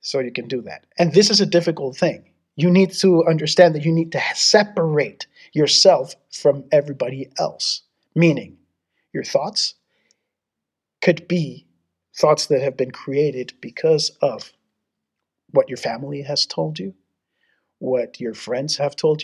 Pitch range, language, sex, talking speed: 145-190 Hz, English, male, 145 wpm